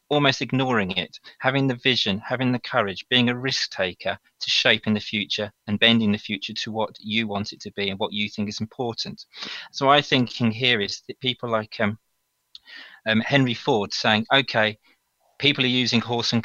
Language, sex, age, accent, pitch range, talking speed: English, male, 30-49, British, 105-125 Hz, 195 wpm